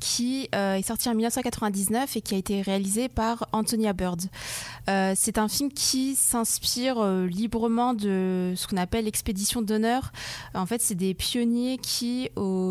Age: 20-39